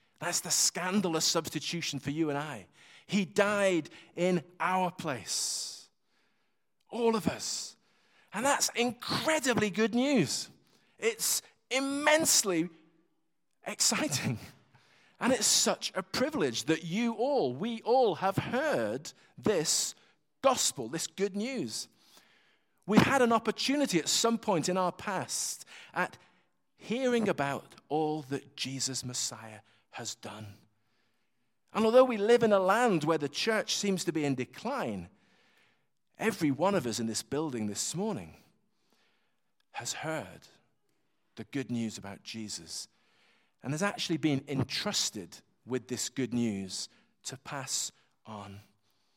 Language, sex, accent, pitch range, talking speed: English, male, British, 130-205 Hz, 125 wpm